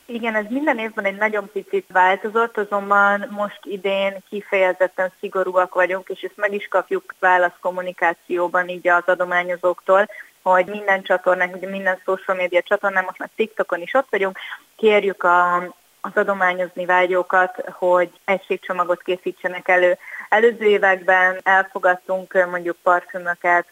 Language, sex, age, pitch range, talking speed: Hungarian, female, 20-39, 180-200 Hz, 130 wpm